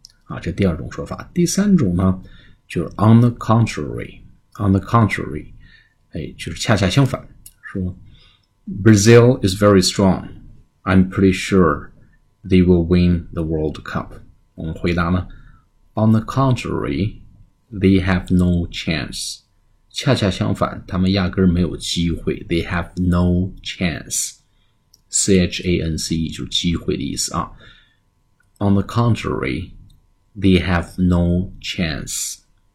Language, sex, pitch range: Chinese, male, 85-100 Hz